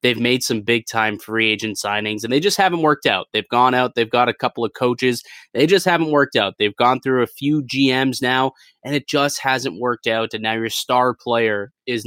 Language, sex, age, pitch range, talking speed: English, male, 20-39, 110-140 Hz, 235 wpm